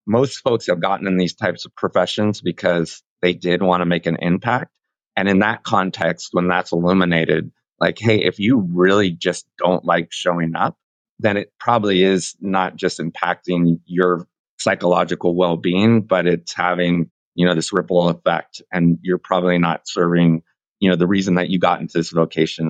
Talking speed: 175 wpm